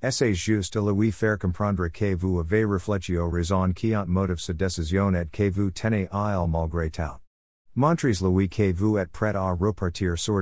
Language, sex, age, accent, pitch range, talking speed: French, male, 50-69, American, 85-110 Hz, 185 wpm